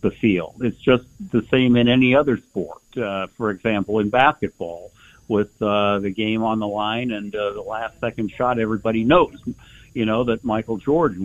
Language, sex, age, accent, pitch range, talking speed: English, male, 60-79, American, 90-110 Hz, 165 wpm